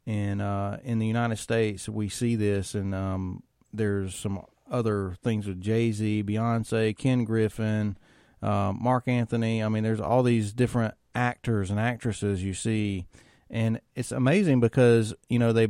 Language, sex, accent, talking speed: English, male, American, 155 wpm